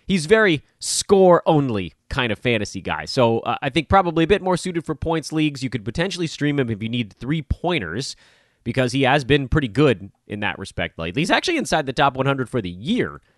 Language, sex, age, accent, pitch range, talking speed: English, male, 30-49, American, 115-165 Hz, 220 wpm